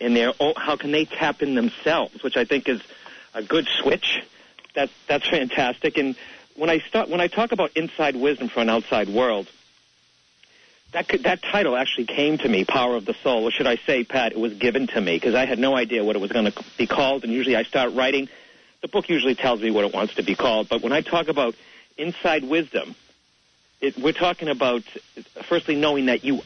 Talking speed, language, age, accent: 220 wpm, English, 50-69, American